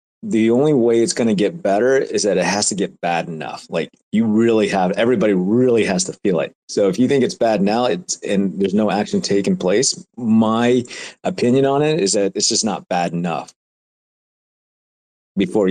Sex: male